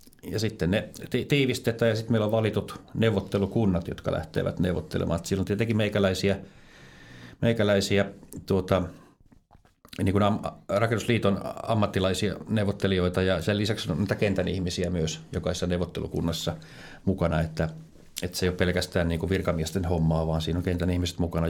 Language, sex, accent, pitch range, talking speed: Finnish, male, native, 85-105 Hz, 140 wpm